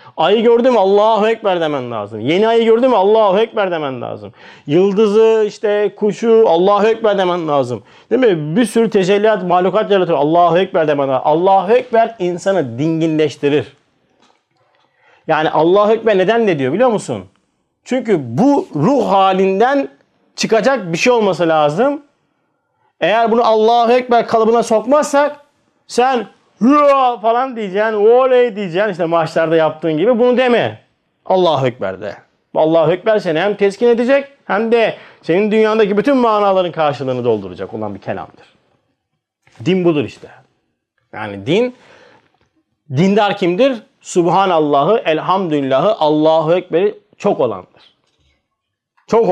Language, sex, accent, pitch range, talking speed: Turkish, male, native, 160-230 Hz, 125 wpm